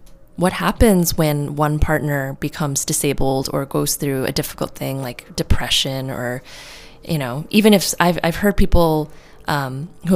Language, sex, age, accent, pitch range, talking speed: English, female, 20-39, American, 140-170 Hz, 155 wpm